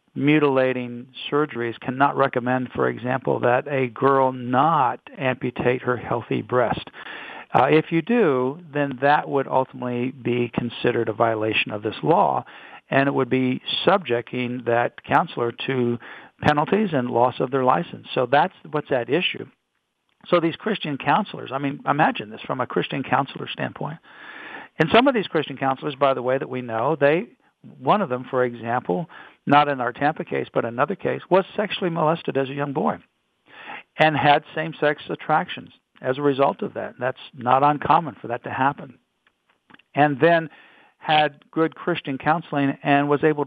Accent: American